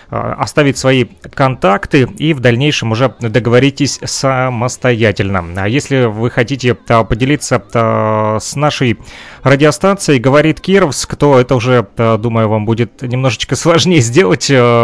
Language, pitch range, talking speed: Russian, 110-140 Hz, 125 wpm